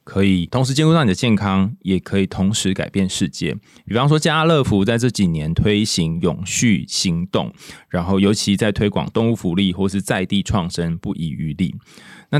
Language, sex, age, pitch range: Chinese, male, 20-39, 95-120 Hz